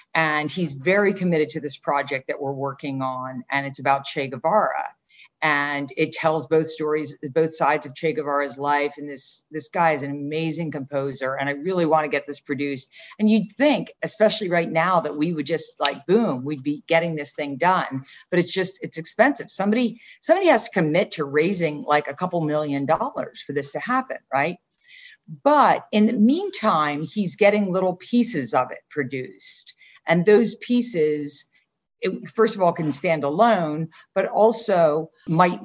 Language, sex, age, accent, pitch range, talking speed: English, female, 50-69, American, 140-180 Hz, 180 wpm